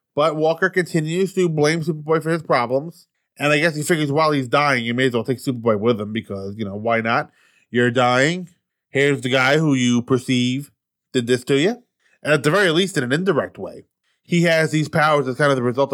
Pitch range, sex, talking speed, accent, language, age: 120-165 Hz, male, 225 wpm, American, English, 20-39